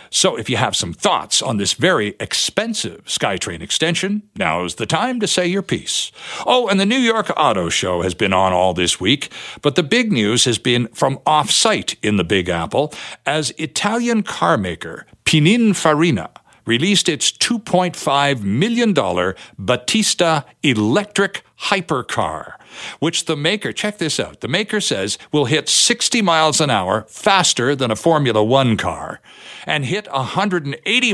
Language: English